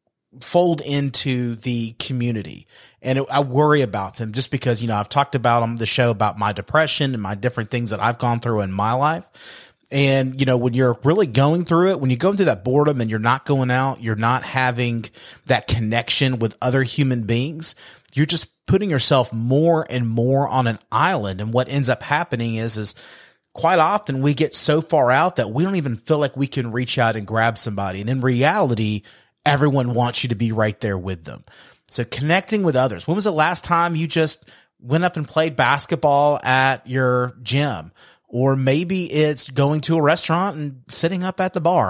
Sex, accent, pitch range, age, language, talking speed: male, American, 120-155 Hz, 30-49, English, 205 wpm